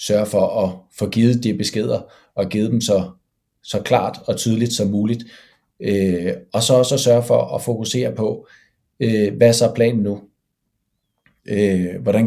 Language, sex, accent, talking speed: Danish, male, native, 155 wpm